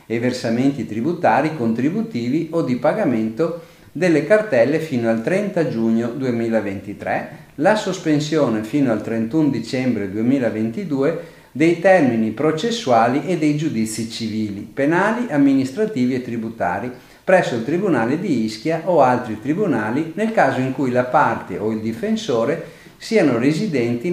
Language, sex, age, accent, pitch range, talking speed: Italian, male, 50-69, native, 110-160 Hz, 125 wpm